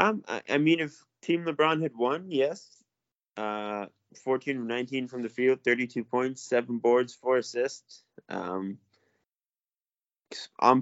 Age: 20-39